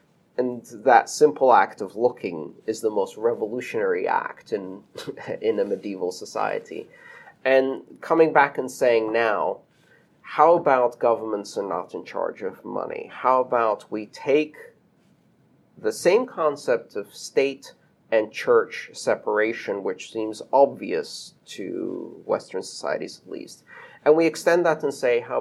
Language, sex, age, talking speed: English, male, 30-49, 135 wpm